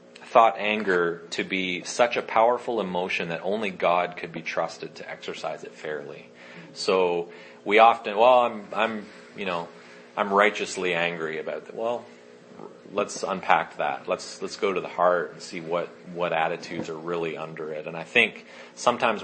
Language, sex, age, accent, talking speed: English, male, 30-49, American, 170 wpm